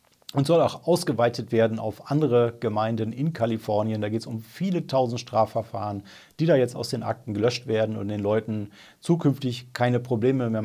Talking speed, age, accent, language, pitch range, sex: 180 wpm, 40-59, German, German, 115-140 Hz, male